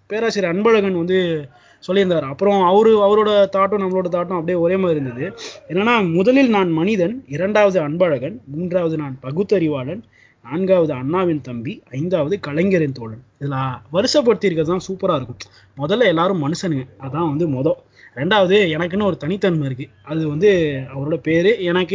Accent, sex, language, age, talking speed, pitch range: native, male, Tamil, 20-39, 135 wpm, 135-190 Hz